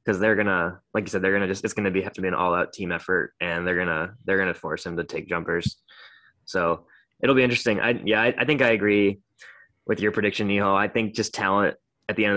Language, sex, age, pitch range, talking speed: English, male, 20-39, 95-110 Hz, 245 wpm